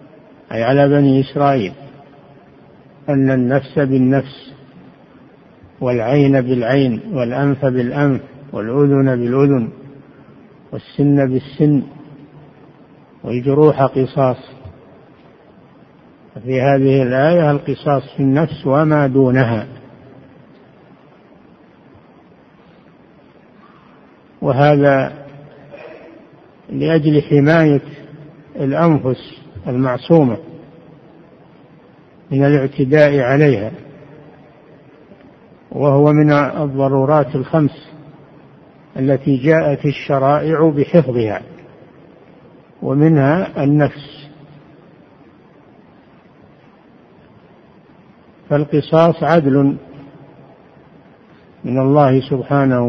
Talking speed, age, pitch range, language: 55 wpm, 60-79, 135-150 Hz, Arabic